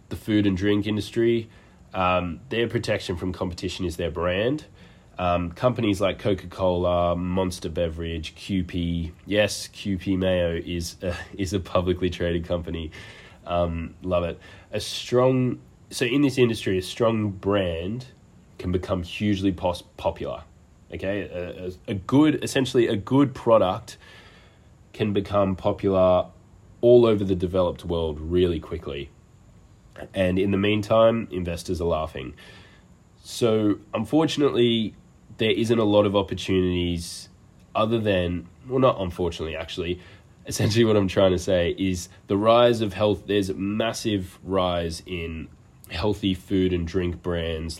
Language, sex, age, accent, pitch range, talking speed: English, male, 20-39, Australian, 85-105 Hz, 135 wpm